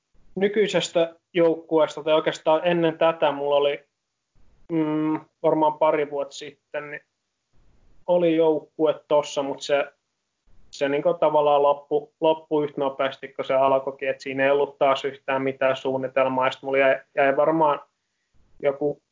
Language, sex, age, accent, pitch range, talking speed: Finnish, male, 20-39, native, 135-155 Hz, 130 wpm